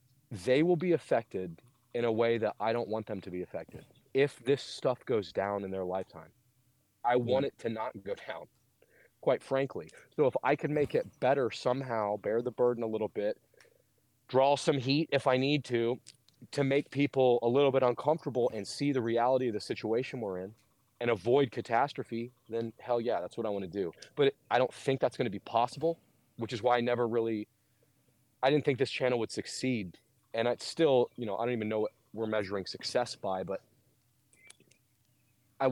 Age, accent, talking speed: 30-49, American, 200 wpm